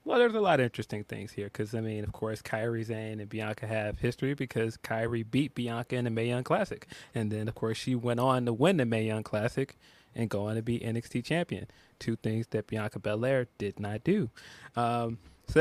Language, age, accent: English, 20-39, American